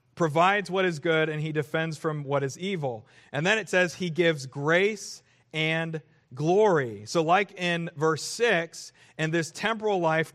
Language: English